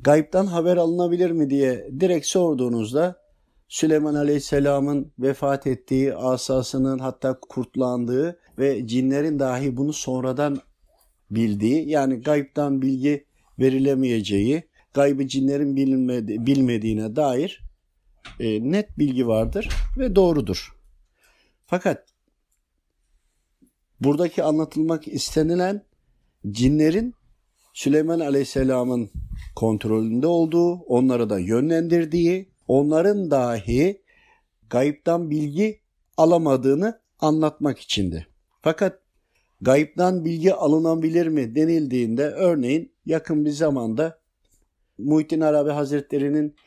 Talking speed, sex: 85 wpm, male